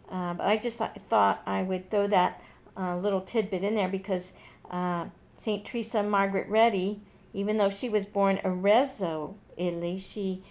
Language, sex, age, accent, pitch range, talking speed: English, female, 50-69, American, 180-225 Hz, 160 wpm